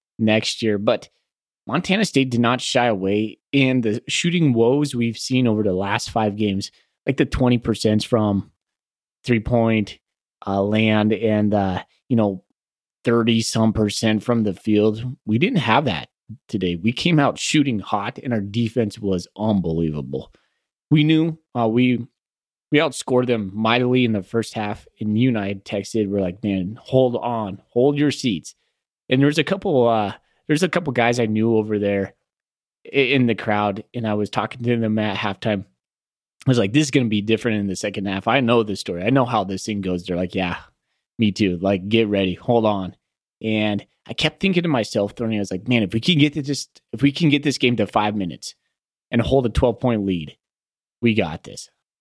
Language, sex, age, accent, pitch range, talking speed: English, male, 30-49, American, 105-125 Hz, 200 wpm